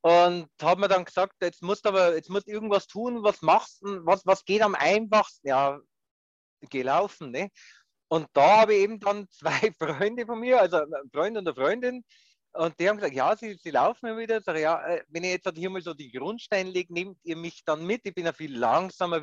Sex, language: male, German